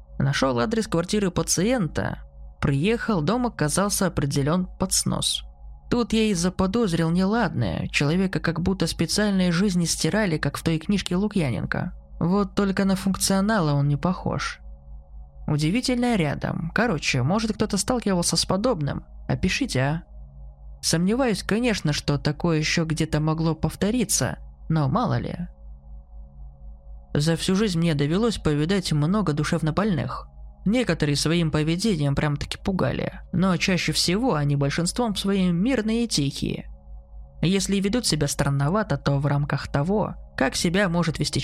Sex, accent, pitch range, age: male, native, 140-195 Hz, 20-39